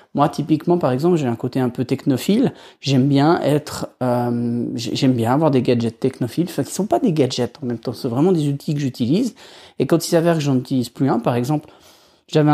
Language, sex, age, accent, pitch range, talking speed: French, male, 30-49, French, 130-160 Hz, 235 wpm